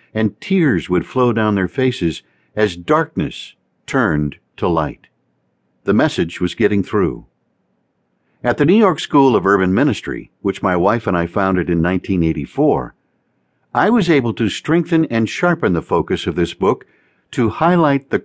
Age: 60-79